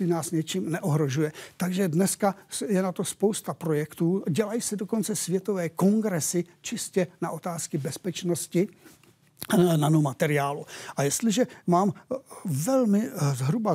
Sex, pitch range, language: male, 150-190 Hz, Czech